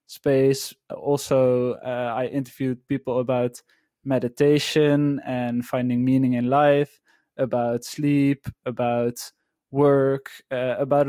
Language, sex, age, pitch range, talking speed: English, male, 20-39, 125-140 Hz, 105 wpm